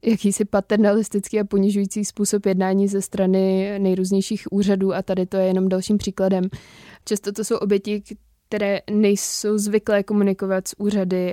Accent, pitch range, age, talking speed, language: native, 190-205 Hz, 20-39, 145 wpm, Czech